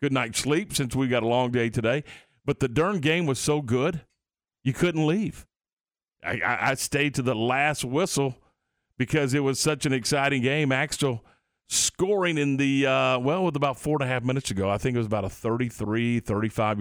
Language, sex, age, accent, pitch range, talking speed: English, male, 40-59, American, 105-140 Hz, 195 wpm